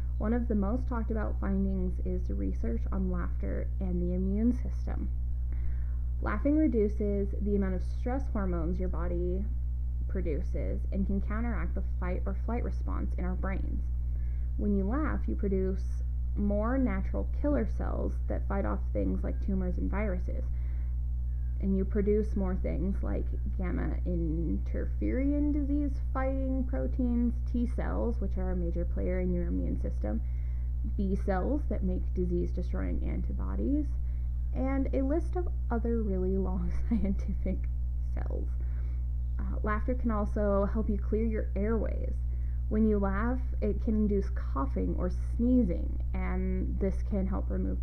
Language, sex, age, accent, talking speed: English, female, 20-39, American, 145 wpm